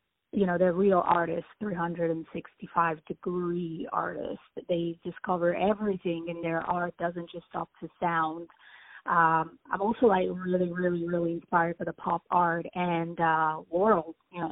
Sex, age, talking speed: female, 30-49, 145 wpm